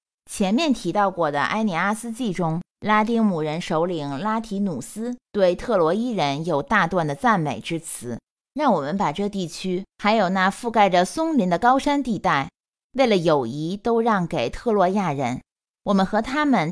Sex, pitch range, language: female, 165-230 Hz, Chinese